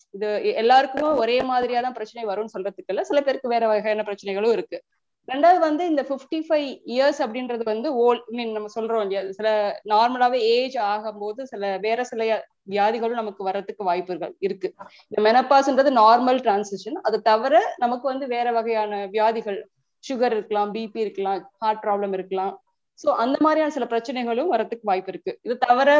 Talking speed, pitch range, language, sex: 130 wpm, 215-265 Hz, English, female